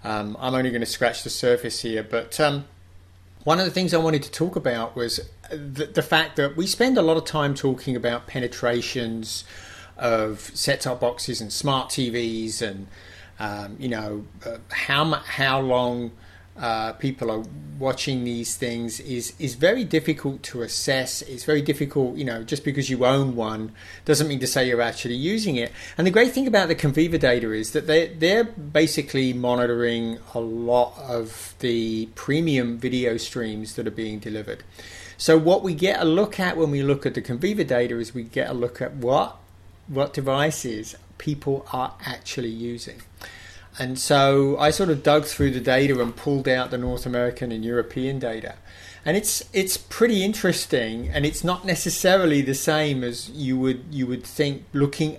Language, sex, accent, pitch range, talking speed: English, male, British, 115-150 Hz, 180 wpm